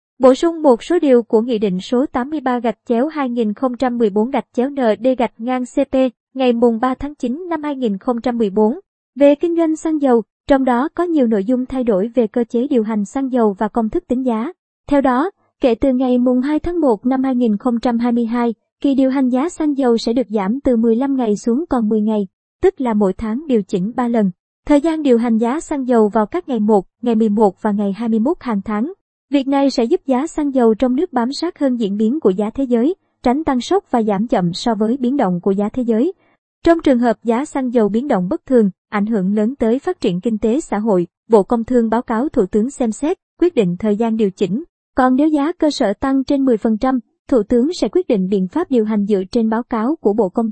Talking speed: 230 wpm